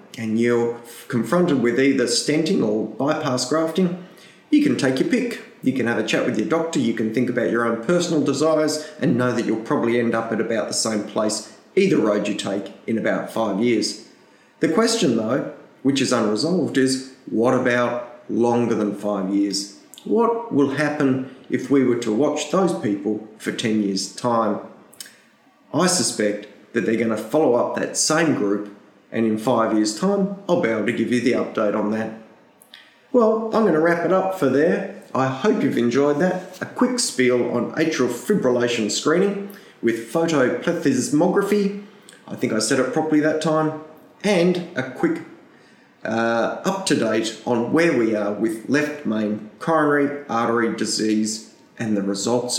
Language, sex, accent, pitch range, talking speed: English, male, Australian, 110-160 Hz, 175 wpm